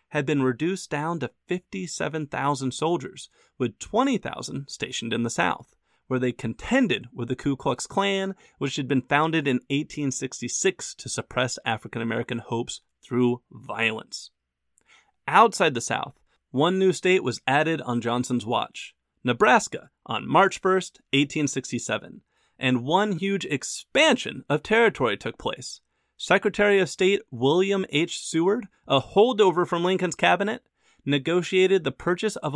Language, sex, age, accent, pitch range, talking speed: English, male, 30-49, American, 125-185 Hz, 135 wpm